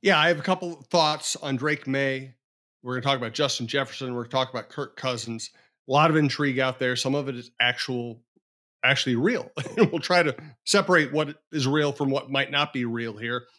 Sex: male